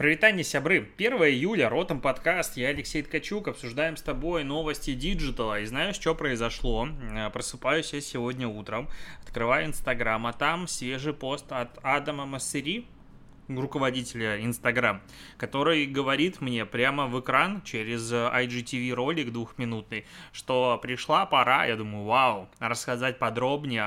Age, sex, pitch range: 20-39, male, 120-150 Hz